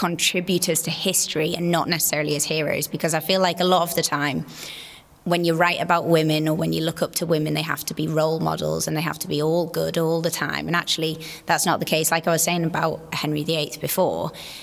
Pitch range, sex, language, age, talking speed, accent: 155-180 Hz, female, English, 20-39, 240 wpm, British